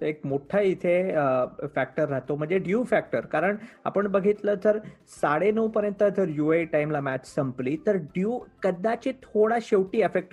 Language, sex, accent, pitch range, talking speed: Marathi, male, native, 155-210 Hz, 155 wpm